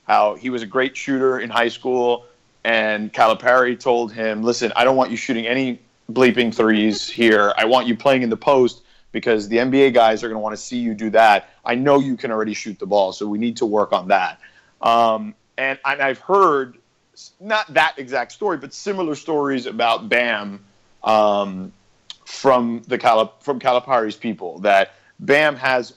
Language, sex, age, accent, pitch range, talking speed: English, male, 30-49, American, 110-140 Hz, 185 wpm